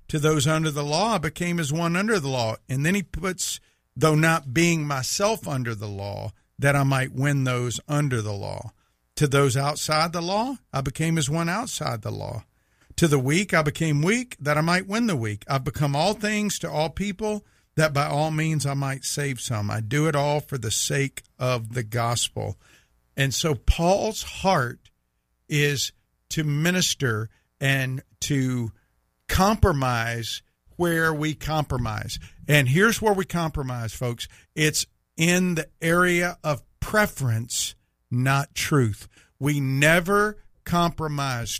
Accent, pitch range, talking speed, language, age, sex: American, 125-165 Hz, 160 wpm, English, 50-69, male